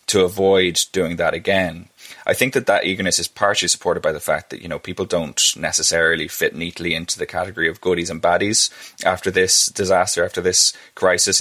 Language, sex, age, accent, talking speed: English, male, 20-39, Irish, 195 wpm